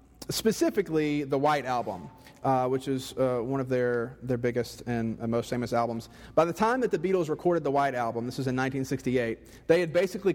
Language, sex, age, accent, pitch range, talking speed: English, male, 40-59, American, 125-155 Hz, 195 wpm